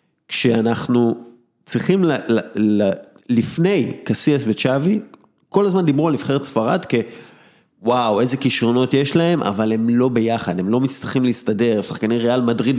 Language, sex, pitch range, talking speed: English, male, 115-150 Hz, 145 wpm